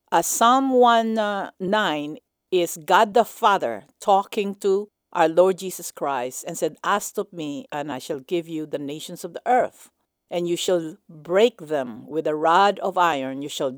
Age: 50-69